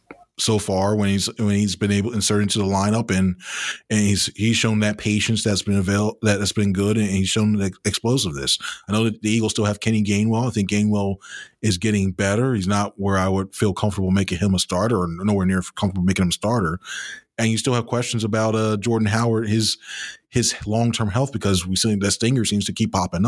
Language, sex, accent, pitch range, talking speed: English, male, American, 95-110 Hz, 225 wpm